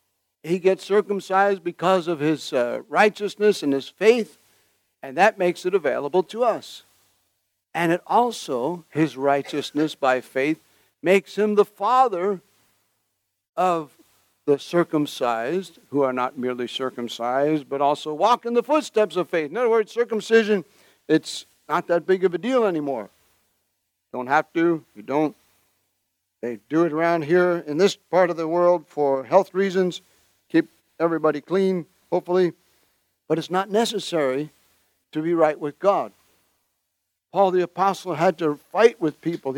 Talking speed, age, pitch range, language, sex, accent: 145 wpm, 60-79, 135-200 Hz, English, male, American